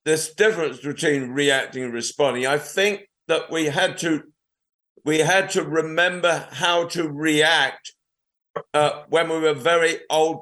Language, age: English, 50-69